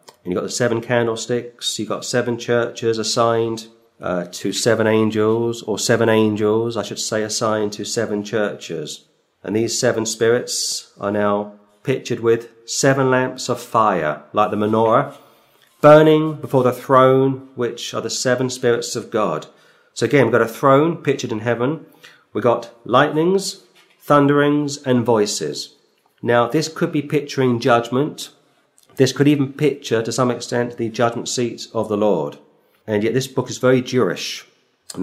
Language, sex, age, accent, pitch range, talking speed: English, male, 40-59, British, 110-135 Hz, 160 wpm